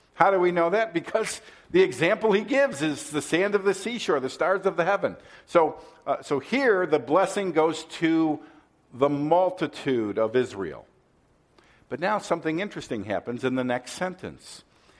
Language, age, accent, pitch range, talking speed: English, 50-69, American, 125-180 Hz, 170 wpm